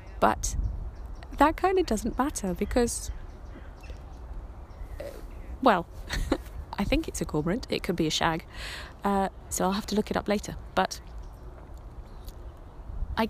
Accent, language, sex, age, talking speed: British, English, female, 30-49, 130 wpm